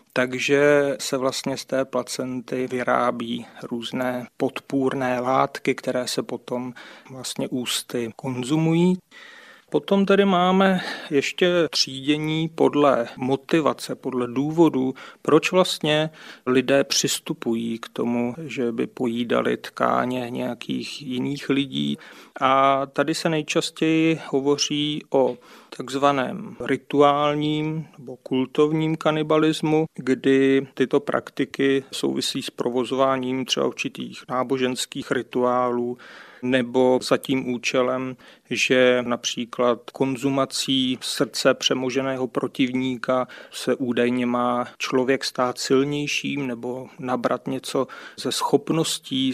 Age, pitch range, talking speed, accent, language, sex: 40-59, 125-145 Hz, 100 wpm, native, Czech, male